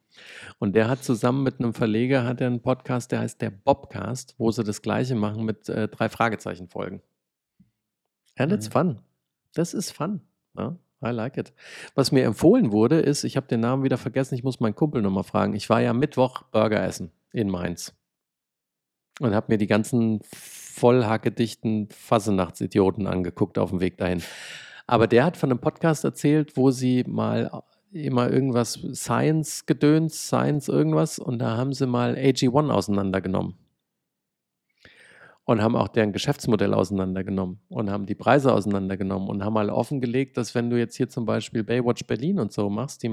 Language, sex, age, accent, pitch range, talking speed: German, male, 50-69, German, 105-130 Hz, 165 wpm